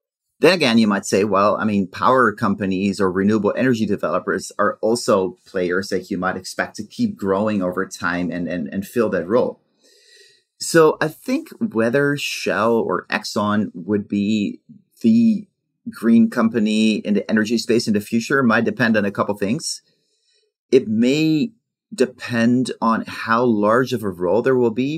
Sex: male